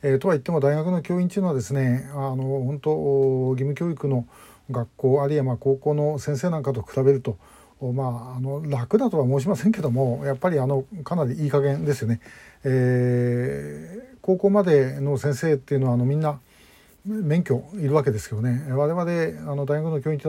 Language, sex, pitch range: Japanese, male, 125-150 Hz